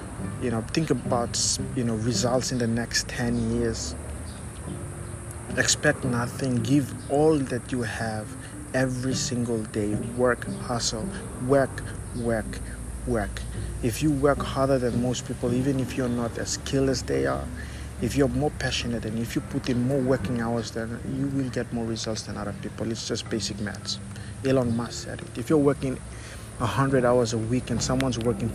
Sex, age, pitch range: male, 50-69, 110-130 Hz